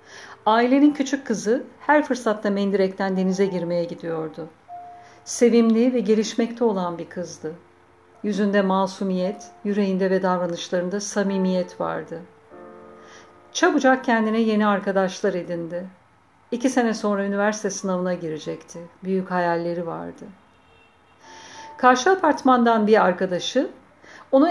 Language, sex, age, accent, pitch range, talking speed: Turkish, female, 50-69, native, 175-245 Hz, 100 wpm